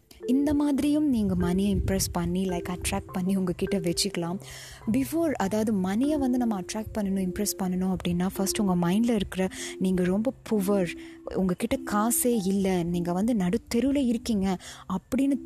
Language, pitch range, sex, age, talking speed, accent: Tamil, 180-215 Hz, female, 20-39, 150 wpm, native